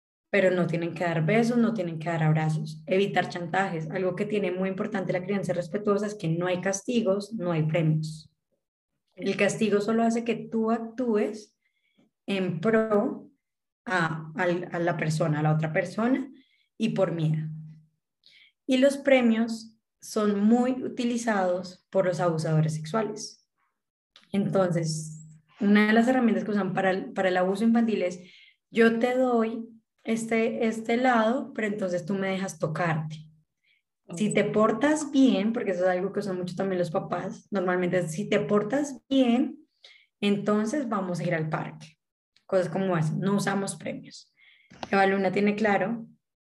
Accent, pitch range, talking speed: Colombian, 175-225 Hz, 155 wpm